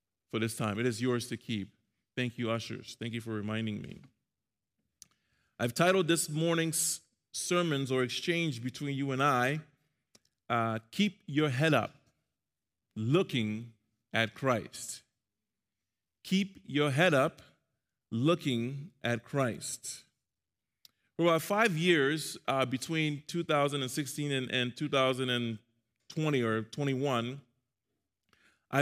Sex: male